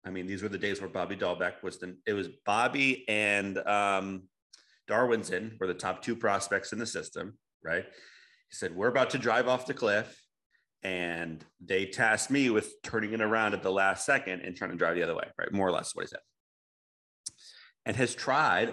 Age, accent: 30-49, American